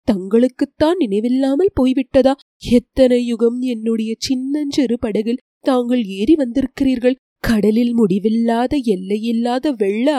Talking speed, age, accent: 90 wpm, 20-39, native